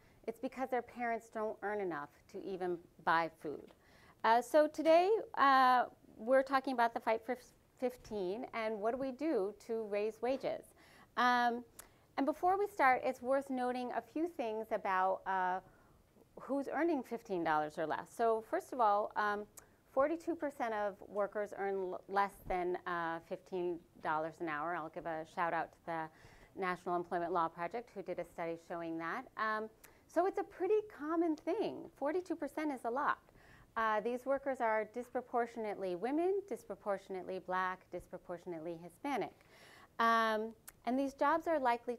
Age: 40-59